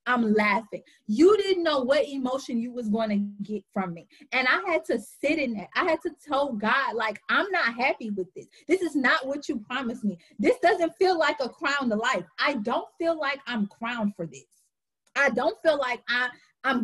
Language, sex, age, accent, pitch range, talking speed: English, female, 20-39, American, 215-295 Hz, 210 wpm